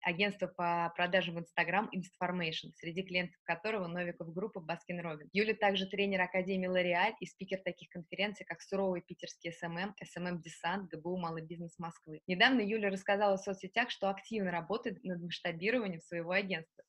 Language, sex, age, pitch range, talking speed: Russian, female, 20-39, 170-195 Hz, 160 wpm